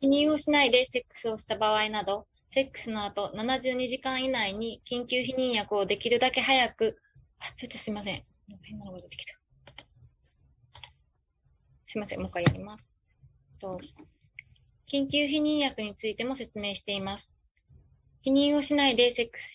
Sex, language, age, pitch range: female, Japanese, 20-39, 210-260 Hz